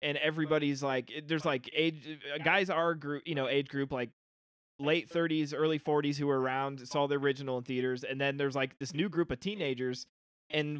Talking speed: 200 wpm